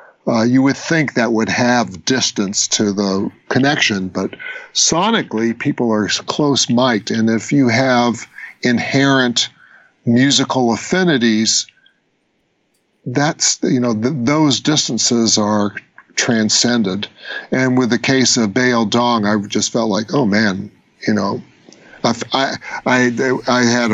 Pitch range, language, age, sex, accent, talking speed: 110-130 Hz, English, 50-69, male, American, 135 wpm